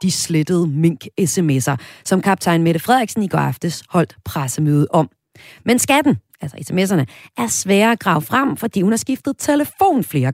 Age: 40-59